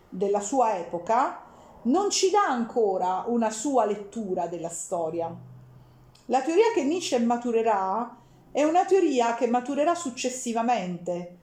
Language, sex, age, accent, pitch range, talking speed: Italian, female, 40-59, native, 205-275 Hz, 120 wpm